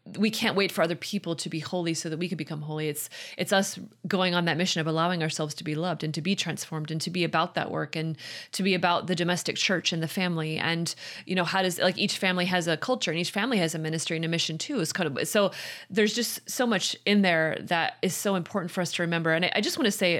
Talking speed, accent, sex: 280 wpm, American, female